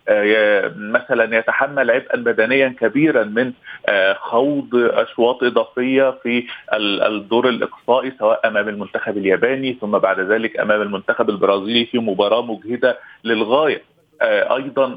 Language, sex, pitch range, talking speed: Arabic, male, 120-160 Hz, 110 wpm